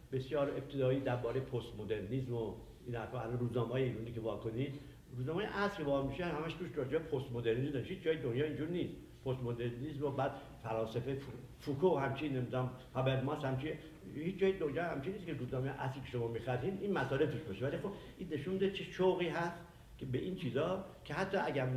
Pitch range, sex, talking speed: 120-160 Hz, male, 180 wpm